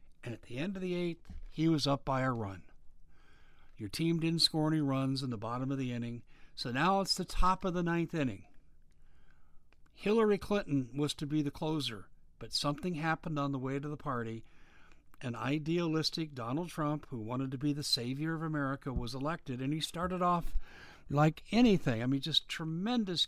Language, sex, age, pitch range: English, male, 60-79, 115-160 Hz